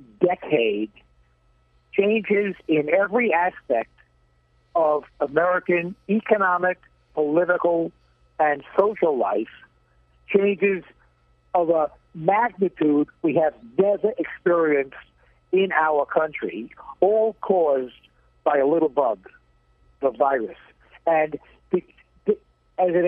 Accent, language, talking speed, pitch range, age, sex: American, English, 90 wpm, 150-200 Hz, 60-79, male